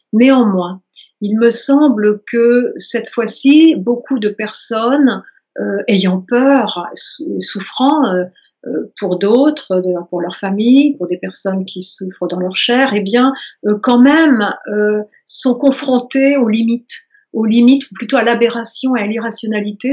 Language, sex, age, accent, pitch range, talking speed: French, female, 50-69, French, 200-250 Hz, 150 wpm